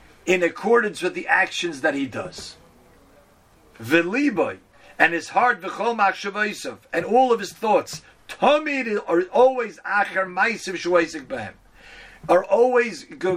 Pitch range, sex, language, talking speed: 170-215 Hz, male, English, 85 wpm